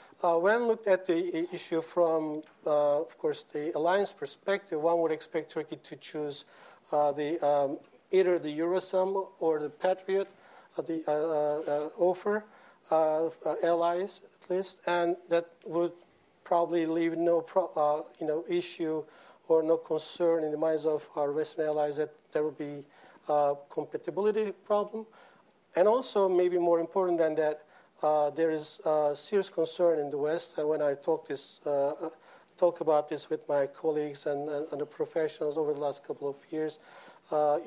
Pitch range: 150-170 Hz